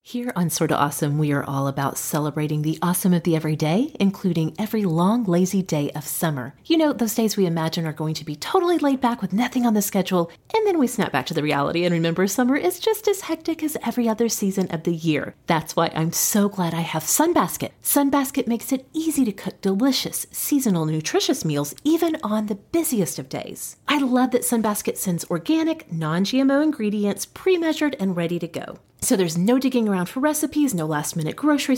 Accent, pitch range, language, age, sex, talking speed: American, 165-265 Hz, English, 30-49, female, 210 wpm